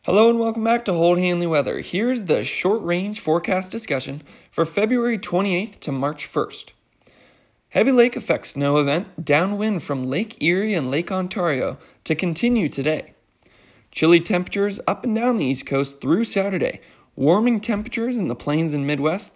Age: 20-39